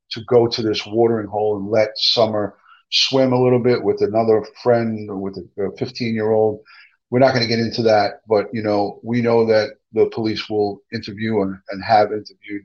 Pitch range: 105-135 Hz